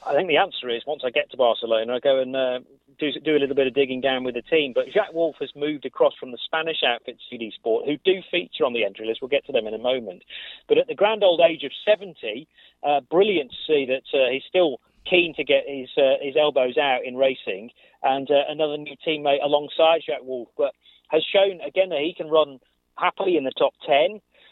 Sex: male